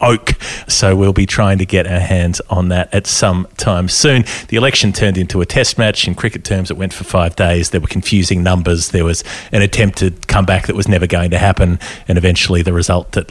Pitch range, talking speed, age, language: 90-105 Hz, 235 wpm, 30-49, English